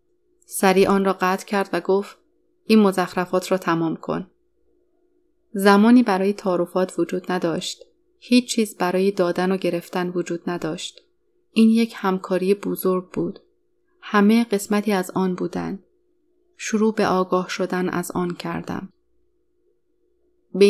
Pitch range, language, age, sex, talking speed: 185-225 Hz, Persian, 30-49, female, 125 wpm